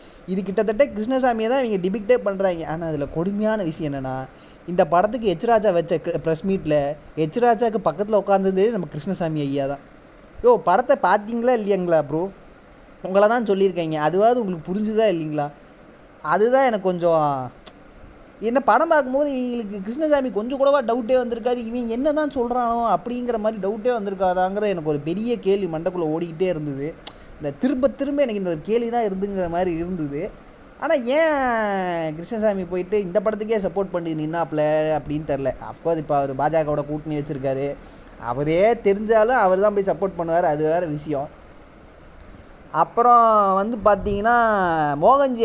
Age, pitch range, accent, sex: 20-39, 160-230 Hz, native, male